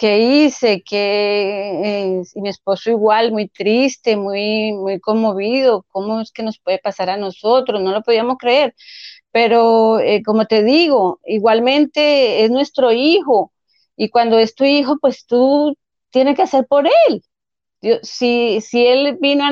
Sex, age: female, 30-49